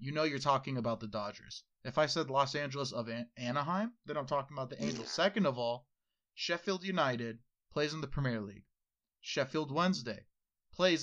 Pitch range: 125-185 Hz